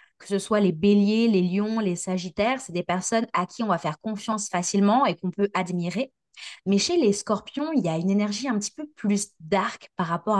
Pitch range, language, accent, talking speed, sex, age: 185-235 Hz, French, French, 225 wpm, female, 20-39